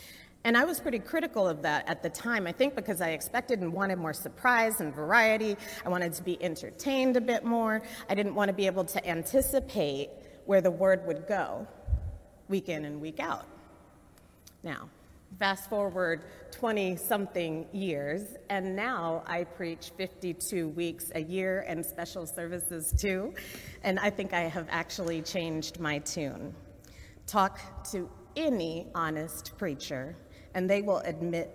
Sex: female